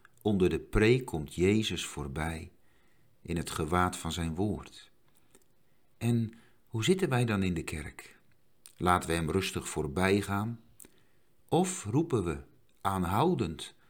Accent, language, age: Dutch, Dutch, 50-69